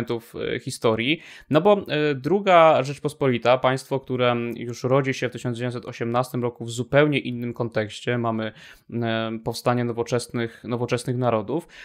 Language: Polish